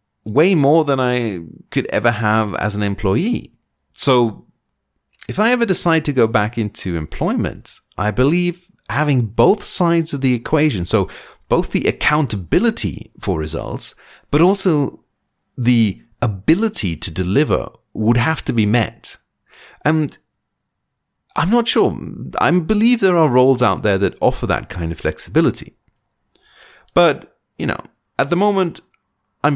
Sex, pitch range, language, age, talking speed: male, 100-155 Hz, English, 30-49, 140 wpm